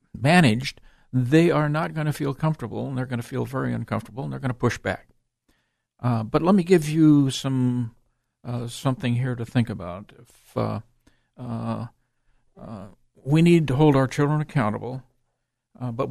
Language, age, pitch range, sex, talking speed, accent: English, 50-69, 115-140 Hz, male, 175 wpm, American